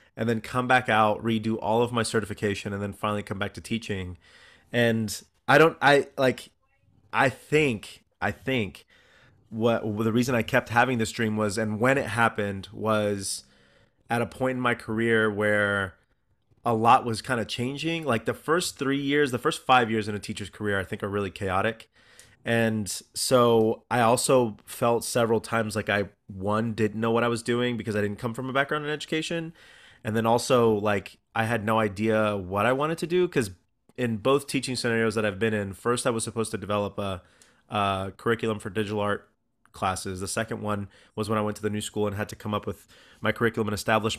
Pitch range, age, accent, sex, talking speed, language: 105-120 Hz, 30-49, American, male, 210 wpm, English